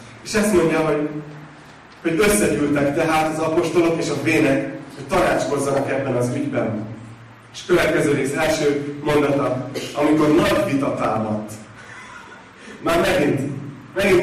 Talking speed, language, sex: 120 wpm, Hungarian, male